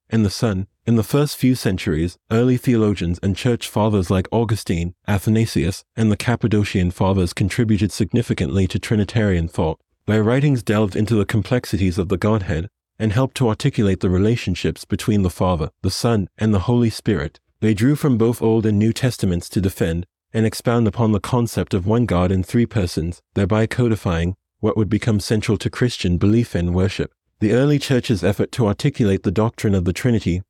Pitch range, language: 95-115 Hz, English